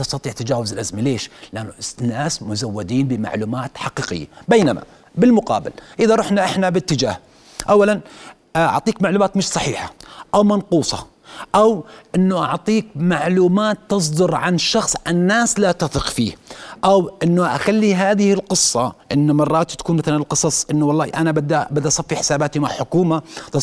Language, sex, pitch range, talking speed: Arabic, male, 145-185 Hz, 135 wpm